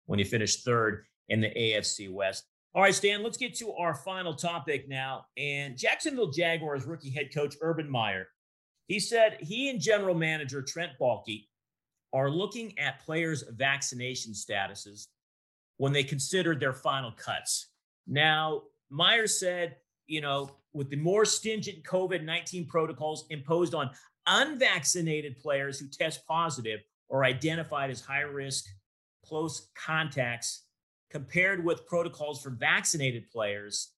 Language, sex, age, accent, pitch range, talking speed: English, male, 40-59, American, 130-170 Hz, 135 wpm